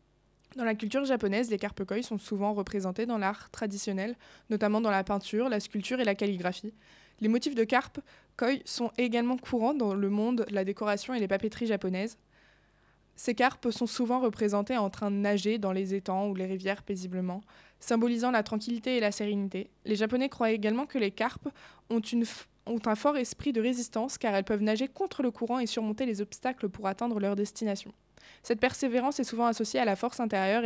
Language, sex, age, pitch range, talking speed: French, female, 20-39, 200-235 Hz, 200 wpm